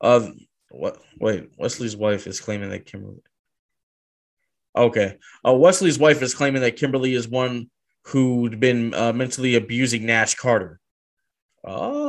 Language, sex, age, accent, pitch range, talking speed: English, male, 20-39, American, 115-145 Hz, 135 wpm